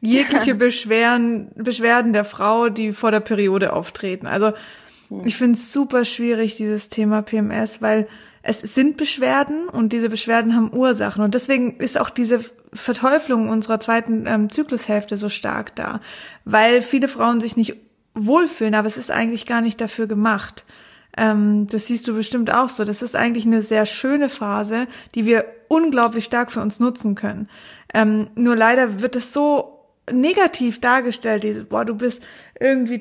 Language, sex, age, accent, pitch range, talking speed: German, female, 20-39, German, 220-245 Hz, 165 wpm